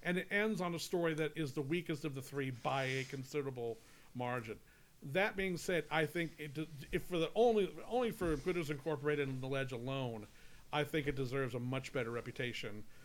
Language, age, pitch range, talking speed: English, 40-59, 135-170 Hz, 200 wpm